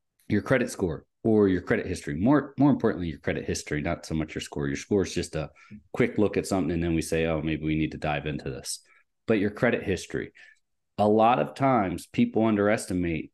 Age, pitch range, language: 30-49, 85-110 Hz, English